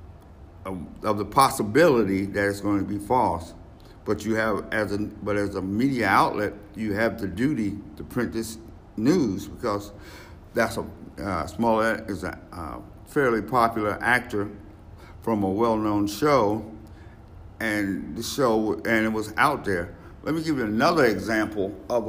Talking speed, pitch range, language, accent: 155 wpm, 95-120 Hz, English, American